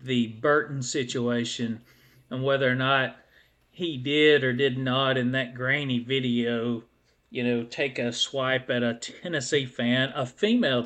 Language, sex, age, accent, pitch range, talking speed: English, male, 40-59, American, 125-175 Hz, 150 wpm